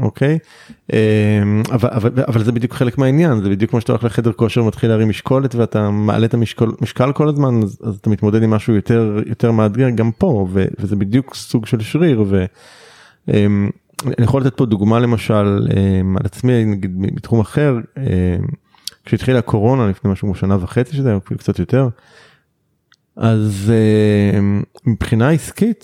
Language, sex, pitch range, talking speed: Hebrew, male, 105-130 Hz, 165 wpm